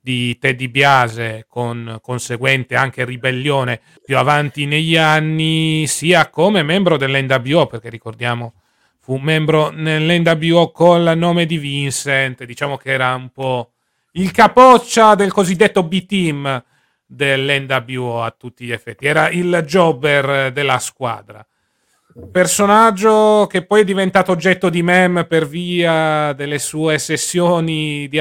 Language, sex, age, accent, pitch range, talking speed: Italian, male, 30-49, native, 130-160 Hz, 125 wpm